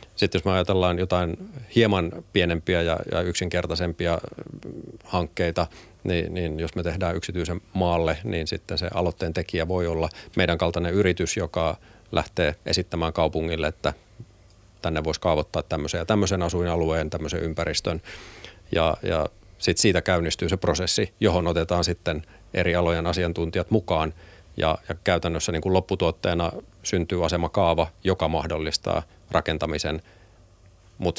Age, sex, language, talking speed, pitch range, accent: 40-59, male, Finnish, 130 wpm, 85-95 Hz, native